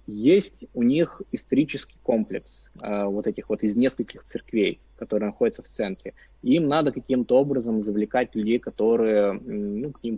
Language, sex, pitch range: Russian, male, 105-130 Hz